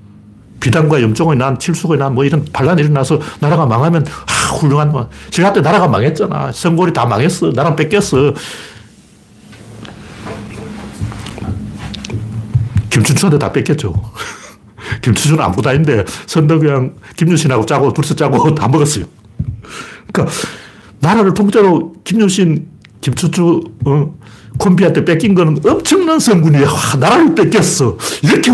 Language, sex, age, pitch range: Korean, male, 60-79, 110-165 Hz